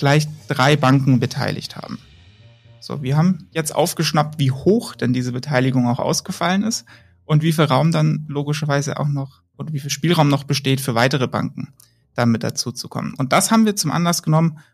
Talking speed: 180 wpm